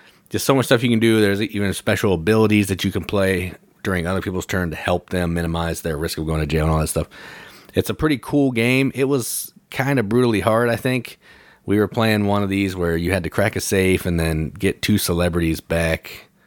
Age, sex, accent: 40-59, male, American